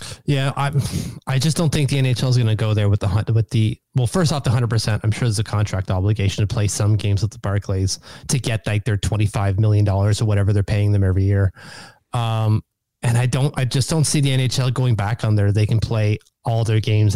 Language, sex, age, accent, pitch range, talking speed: English, male, 20-39, American, 110-145 Hz, 250 wpm